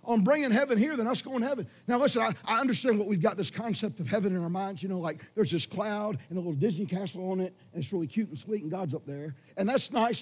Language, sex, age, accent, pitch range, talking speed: English, male, 50-69, American, 160-240 Hz, 295 wpm